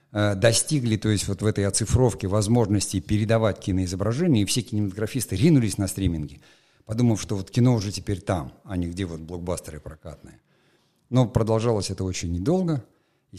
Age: 50-69